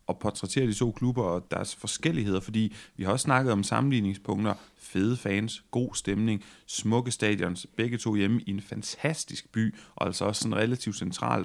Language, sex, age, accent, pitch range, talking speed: Danish, male, 30-49, native, 95-120 Hz, 180 wpm